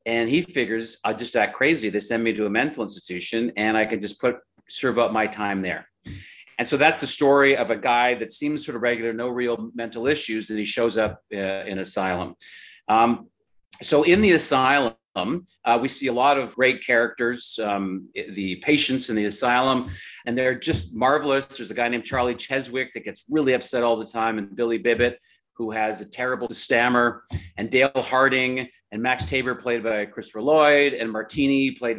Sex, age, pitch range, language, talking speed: male, 40-59, 110-125 Hz, English, 195 wpm